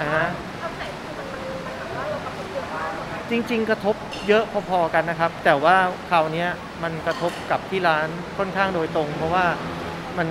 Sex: male